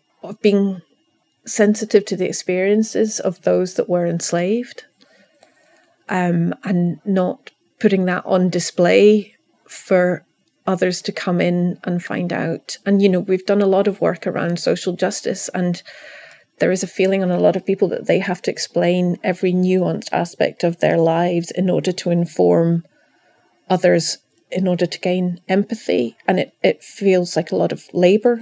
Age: 30-49